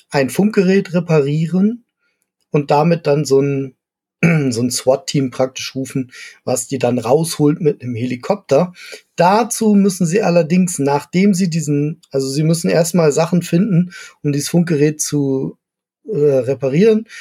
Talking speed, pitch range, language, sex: 135 wpm, 145-180 Hz, German, male